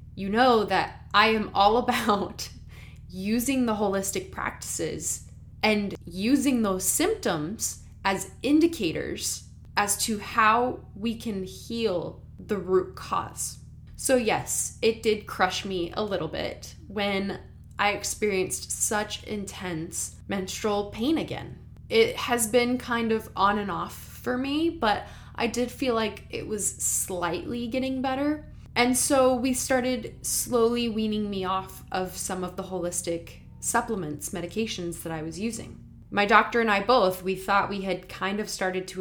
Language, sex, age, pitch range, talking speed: English, female, 10-29, 185-230 Hz, 145 wpm